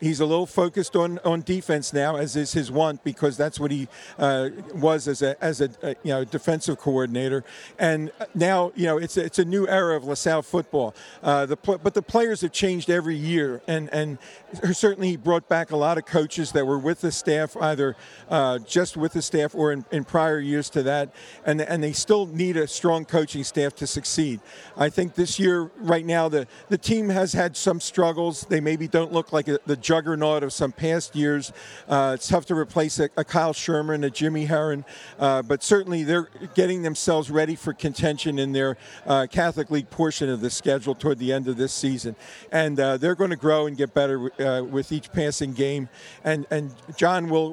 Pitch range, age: 140-165 Hz, 50-69